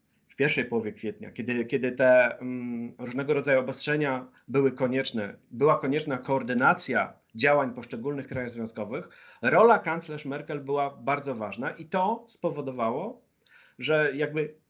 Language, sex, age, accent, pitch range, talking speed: Polish, male, 40-59, native, 130-155 Hz, 120 wpm